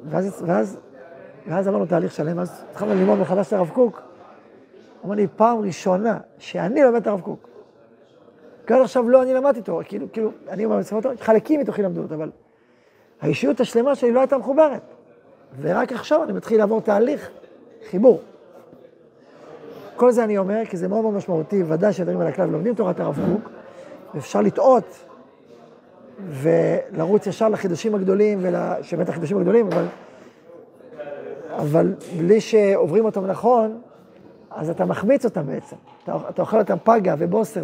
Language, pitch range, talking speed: Hebrew, 180-230 Hz, 145 wpm